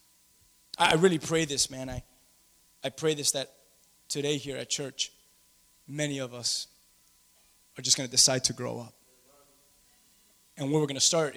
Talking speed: 165 wpm